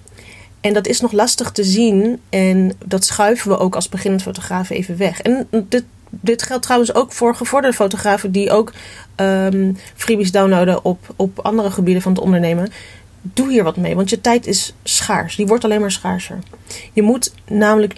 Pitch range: 175-220 Hz